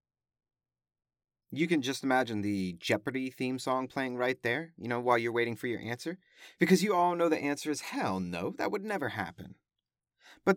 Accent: American